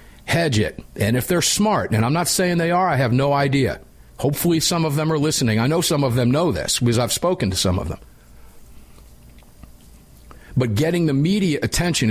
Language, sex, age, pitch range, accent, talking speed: English, male, 50-69, 105-165 Hz, American, 205 wpm